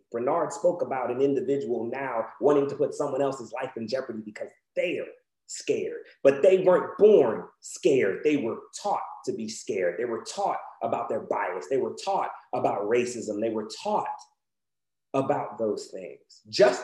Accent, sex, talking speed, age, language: American, male, 165 wpm, 30-49, English